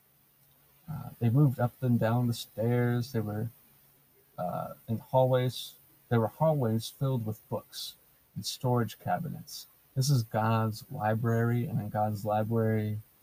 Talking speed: 135 wpm